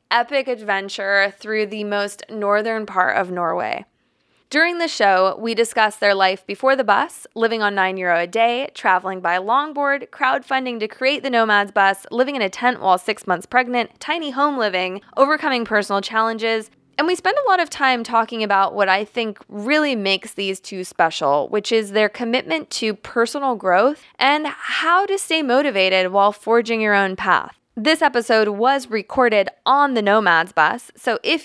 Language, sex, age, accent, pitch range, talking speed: English, female, 20-39, American, 195-255 Hz, 175 wpm